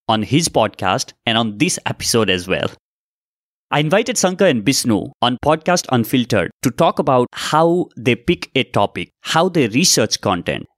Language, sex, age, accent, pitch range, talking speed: English, male, 30-49, Indian, 105-150 Hz, 160 wpm